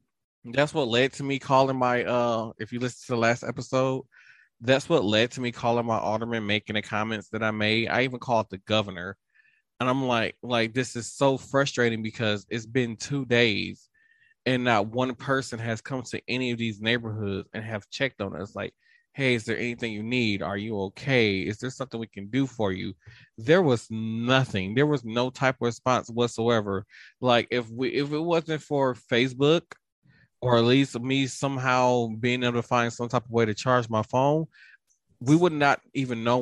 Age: 20-39